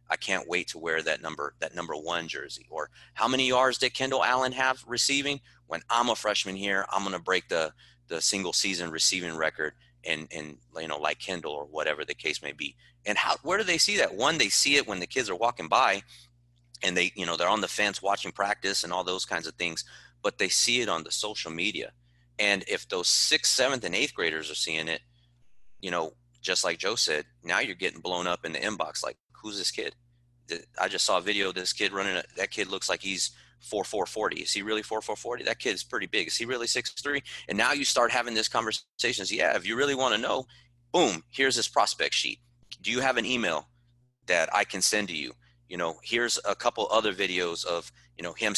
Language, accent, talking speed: English, American, 235 wpm